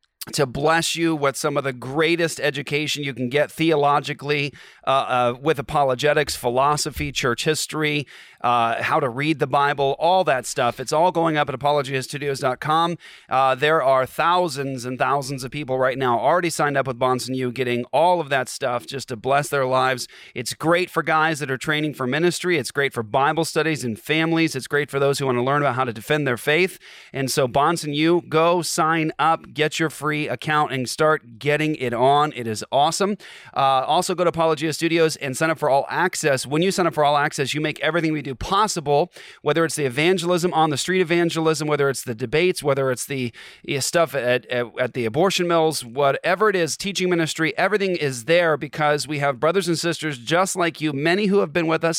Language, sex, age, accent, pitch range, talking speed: English, male, 40-59, American, 130-160 Hz, 210 wpm